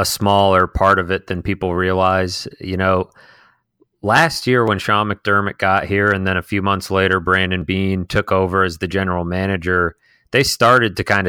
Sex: male